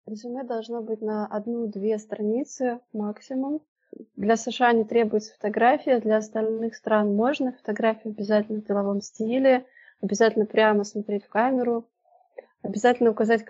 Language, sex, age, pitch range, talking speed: Russian, female, 20-39, 210-245 Hz, 125 wpm